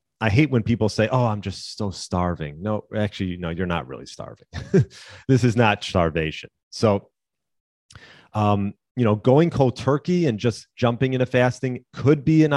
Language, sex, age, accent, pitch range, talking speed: English, male, 30-49, American, 95-120 Hz, 170 wpm